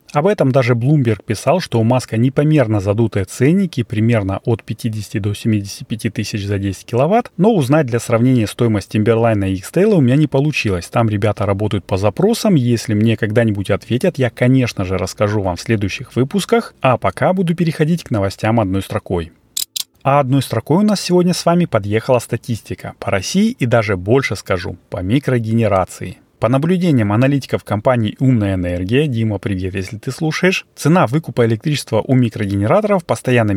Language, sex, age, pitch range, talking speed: Russian, male, 30-49, 110-145 Hz, 165 wpm